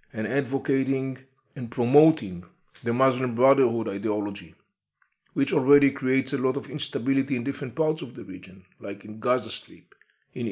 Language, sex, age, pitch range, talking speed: English, male, 40-59, 115-145 Hz, 150 wpm